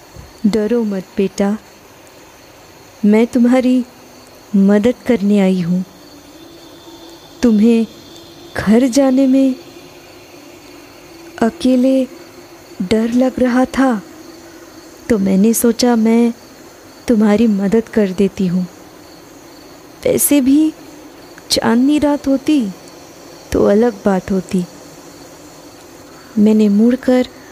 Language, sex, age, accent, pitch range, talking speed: Hindi, female, 20-39, native, 215-285 Hz, 85 wpm